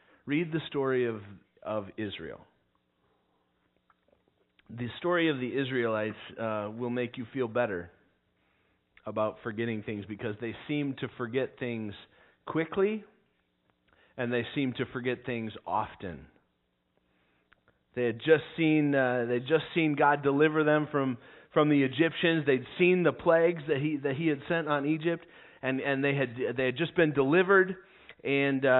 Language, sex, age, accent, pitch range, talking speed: English, male, 30-49, American, 115-150 Hz, 150 wpm